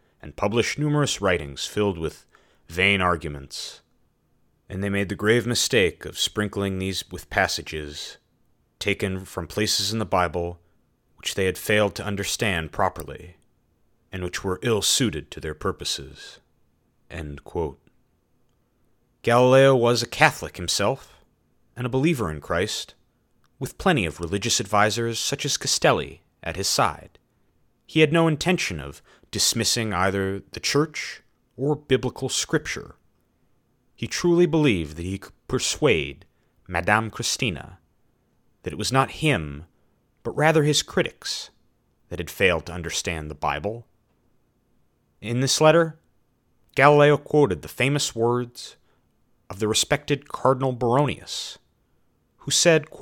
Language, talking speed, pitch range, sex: English, 130 wpm, 90-130 Hz, male